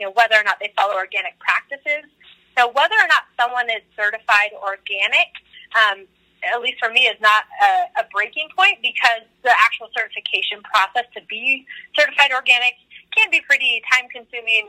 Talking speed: 170 wpm